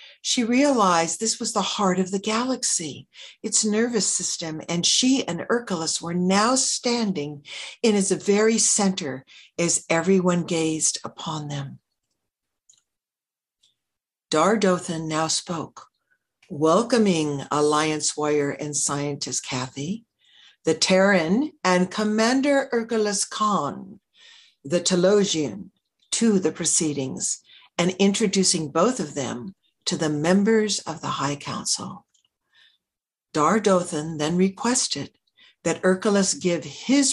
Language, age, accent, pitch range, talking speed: English, 60-79, American, 155-220 Hz, 110 wpm